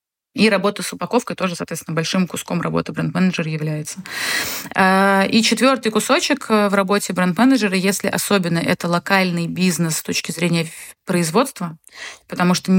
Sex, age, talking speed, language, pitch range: female, 20-39, 130 wpm, Russian, 165-195 Hz